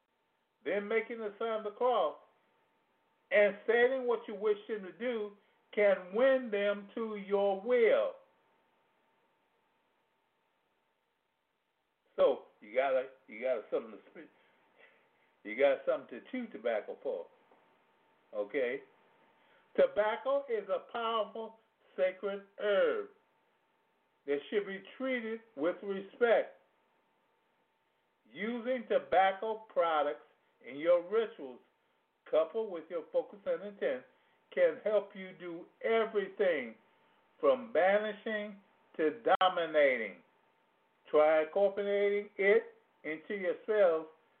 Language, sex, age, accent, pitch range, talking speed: English, male, 50-69, American, 195-280 Hz, 100 wpm